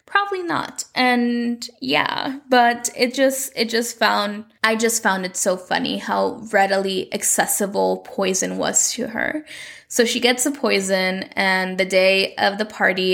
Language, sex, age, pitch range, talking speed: English, female, 10-29, 195-240 Hz, 155 wpm